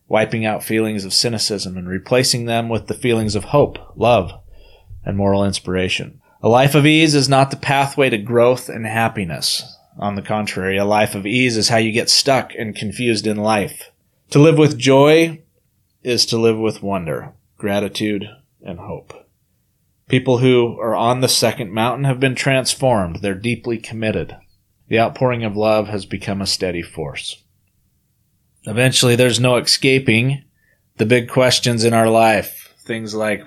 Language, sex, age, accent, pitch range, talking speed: English, male, 30-49, American, 100-125 Hz, 165 wpm